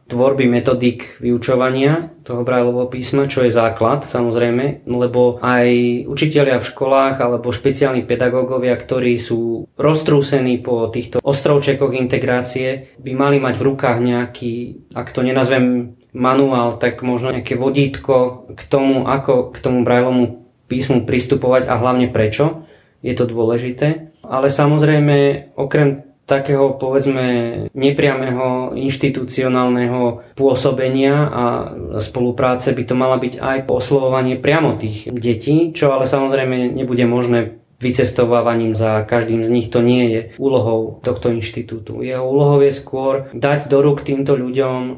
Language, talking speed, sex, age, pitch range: Slovak, 130 wpm, male, 20-39, 120-135 Hz